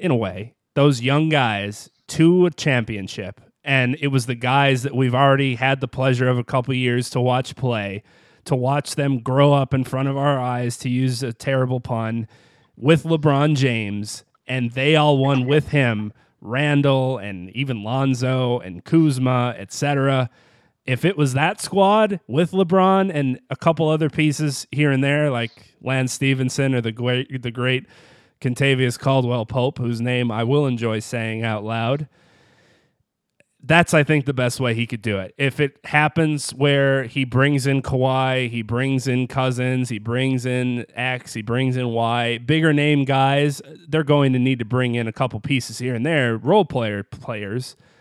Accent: American